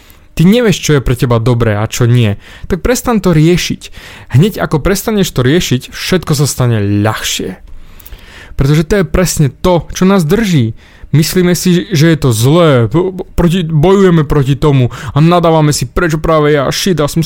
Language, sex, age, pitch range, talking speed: Slovak, male, 20-39, 115-180 Hz, 165 wpm